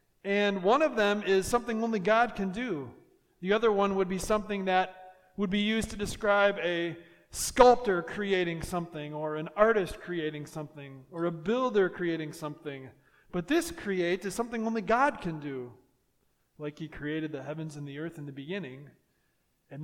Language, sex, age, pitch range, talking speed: English, male, 40-59, 170-245 Hz, 170 wpm